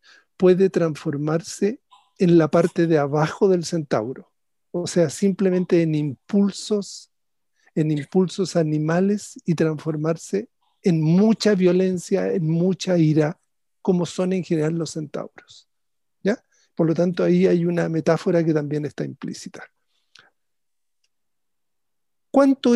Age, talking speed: 50-69, 115 wpm